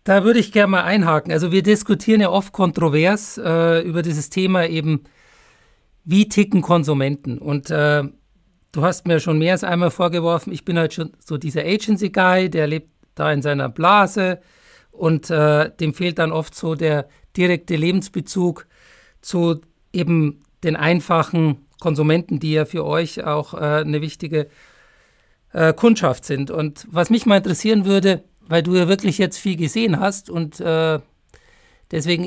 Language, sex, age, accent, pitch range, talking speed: German, male, 50-69, German, 155-190 Hz, 160 wpm